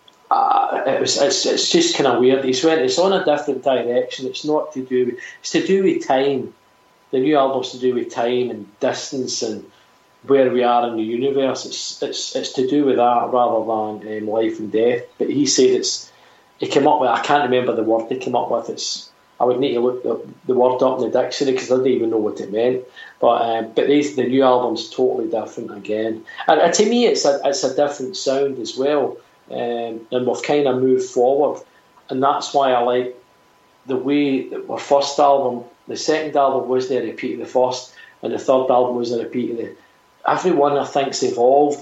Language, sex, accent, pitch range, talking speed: English, male, British, 125-150 Hz, 225 wpm